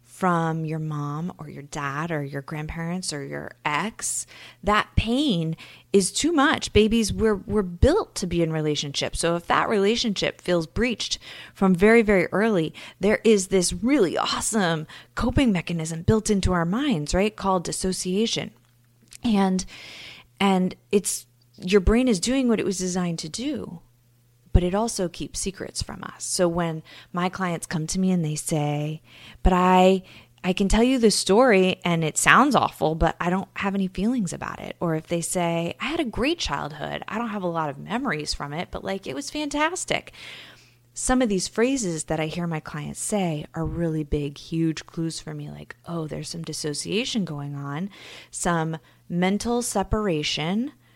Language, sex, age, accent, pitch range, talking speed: English, female, 20-39, American, 155-205 Hz, 175 wpm